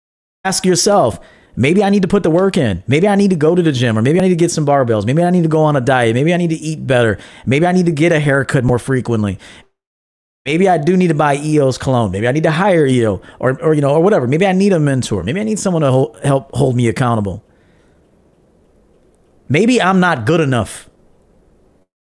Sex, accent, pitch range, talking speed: male, American, 115-170 Hz, 240 wpm